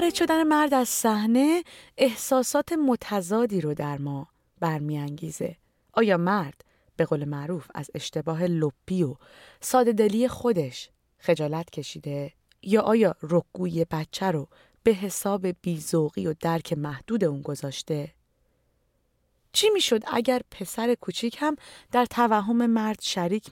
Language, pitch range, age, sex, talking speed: Persian, 155-240 Hz, 30-49, female, 120 wpm